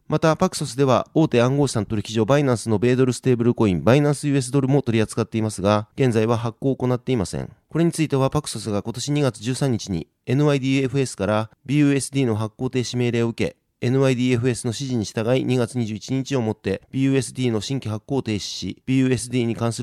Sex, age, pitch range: male, 30-49, 115-140 Hz